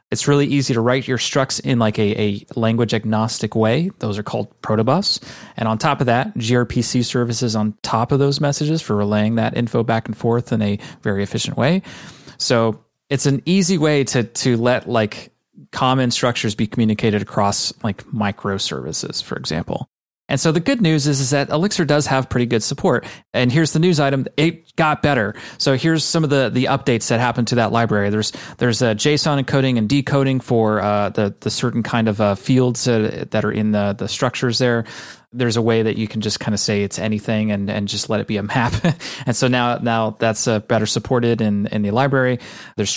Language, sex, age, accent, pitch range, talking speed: English, male, 30-49, American, 110-135 Hz, 210 wpm